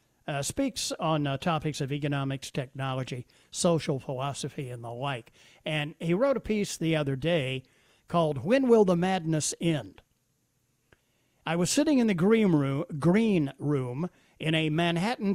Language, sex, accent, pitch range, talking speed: English, male, American, 150-205 Hz, 150 wpm